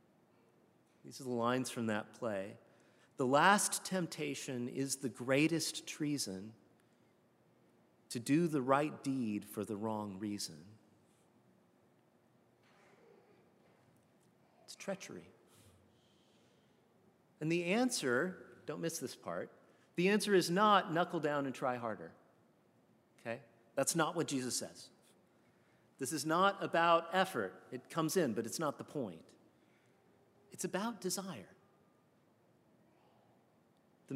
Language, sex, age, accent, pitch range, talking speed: English, male, 40-59, American, 125-170 Hz, 110 wpm